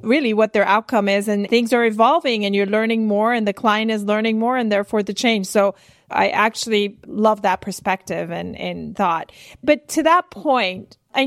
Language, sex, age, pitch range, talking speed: English, female, 30-49, 195-230 Hz, 195 wpm